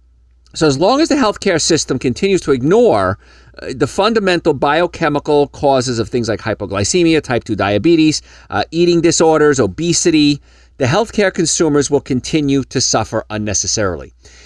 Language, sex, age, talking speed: English, male, 50-69, 135 wpm